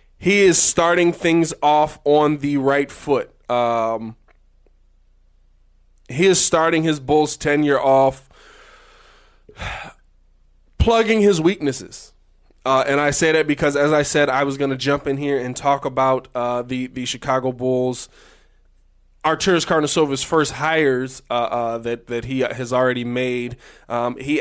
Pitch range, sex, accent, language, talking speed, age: 125-155 Hz, male, American, English, 145 wpm, 20-39